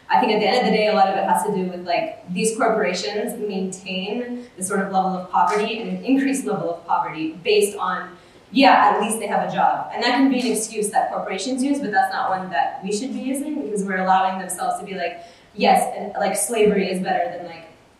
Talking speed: 245 wpm